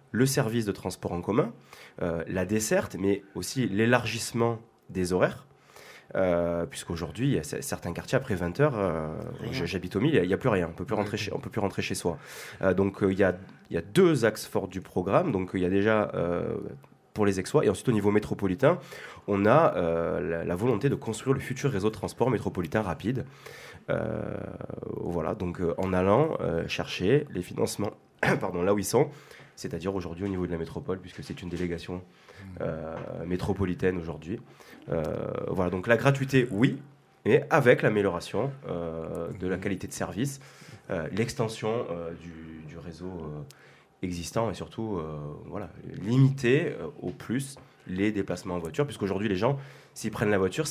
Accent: French